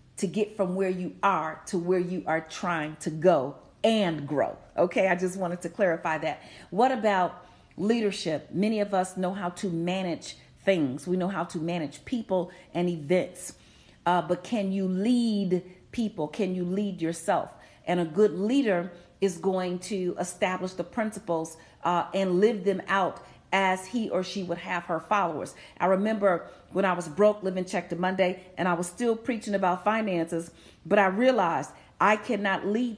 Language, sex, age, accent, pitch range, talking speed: English, female, 40-59, American, 175-205 Hz, 175 wpm